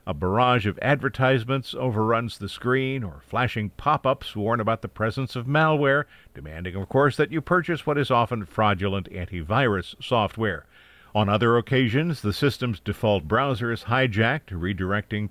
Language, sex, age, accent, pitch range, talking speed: English, male, 50-69, American, 100-130 Hz, 150 wpm